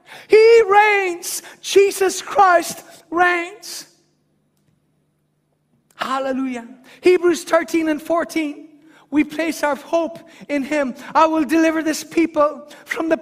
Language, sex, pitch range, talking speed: English, male, 305-355 Hz, 105 wpm